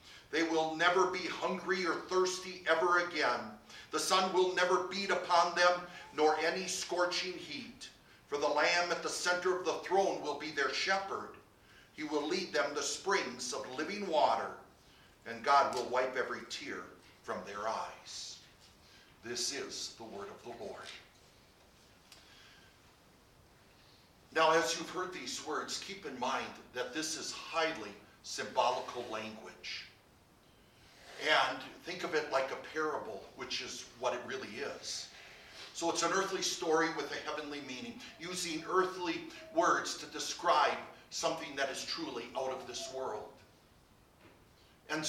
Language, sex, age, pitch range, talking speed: English, male, 50-69, 145-180 Hz, 145 wpm